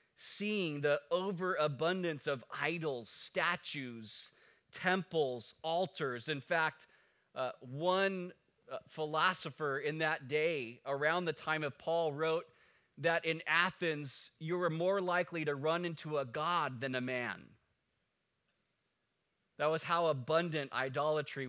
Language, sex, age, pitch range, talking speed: English, male, 30-49, 135-165 Hz, 120 wpm